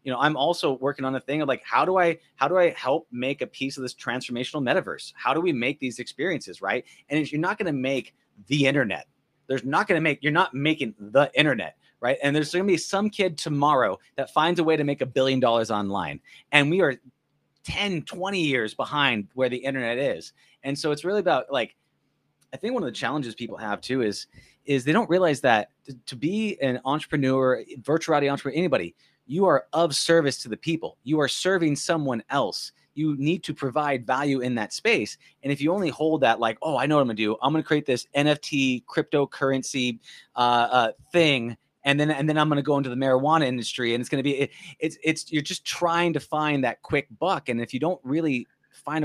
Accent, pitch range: American, 125-155 Hz